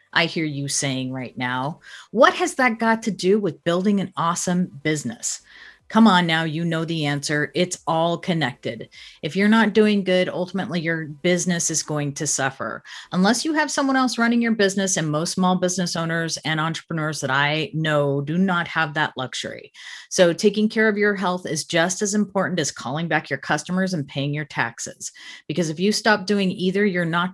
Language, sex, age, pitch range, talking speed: English, female, 40-59, 150-200 Hz, 195 wpm